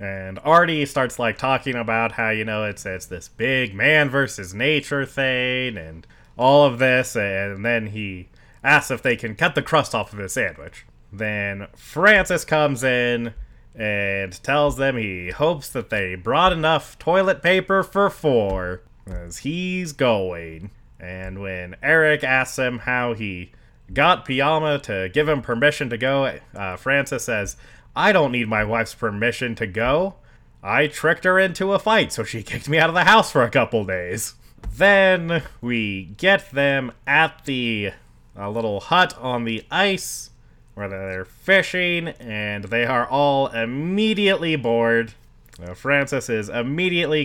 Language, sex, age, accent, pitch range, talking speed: English, male, 20-39, American, 105-150 Hz, 155 wpm